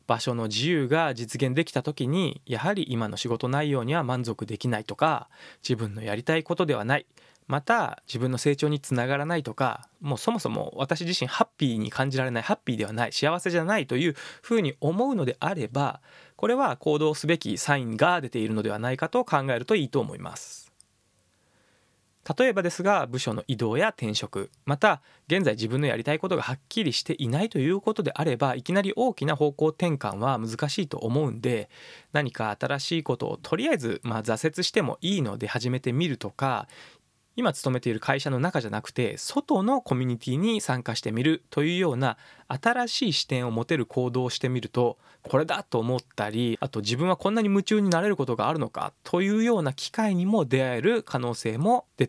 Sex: male